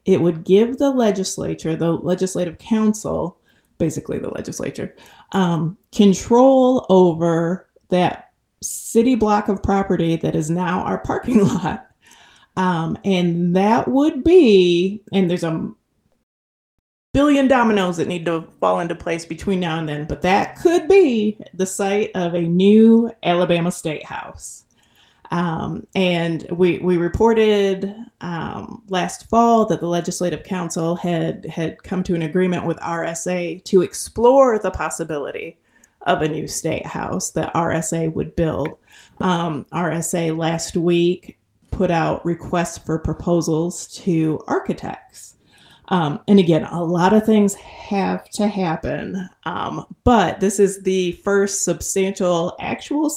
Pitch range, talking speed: 170-205 Hz, 135 wpm